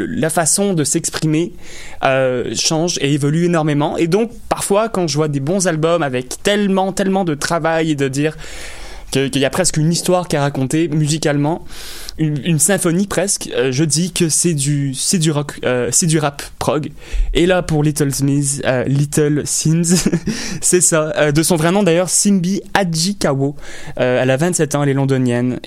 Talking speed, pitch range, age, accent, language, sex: 190 wpm, 130-160 Hz, 20-39, French, French, male